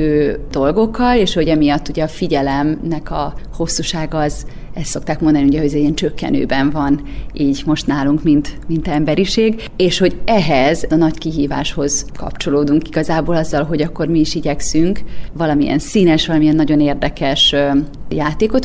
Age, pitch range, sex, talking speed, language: 30-49, 145-170 Hz, female, 135 wpm, Hungarian